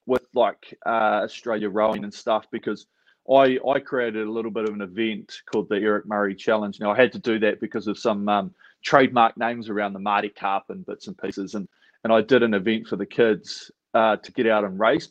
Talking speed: 225 wpm